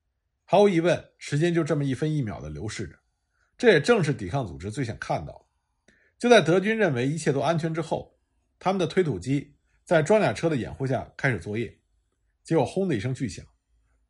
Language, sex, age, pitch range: Chinese, male, 50-69, 115-170 Hz